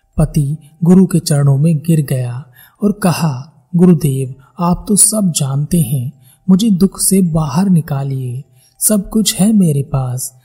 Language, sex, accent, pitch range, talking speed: Hindi, male, native, 140-180 Hz, 145 wpm